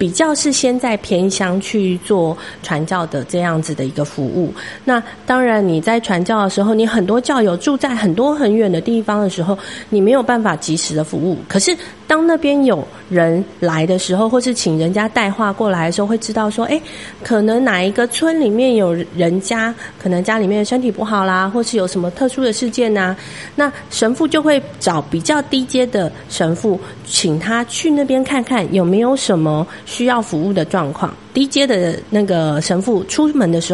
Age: 30-49